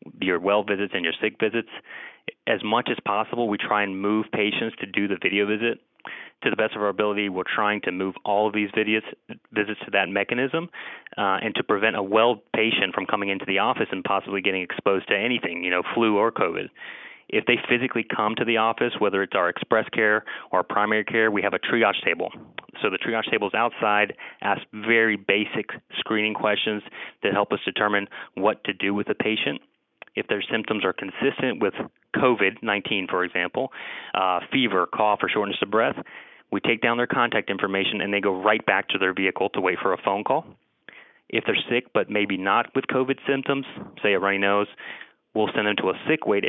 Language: English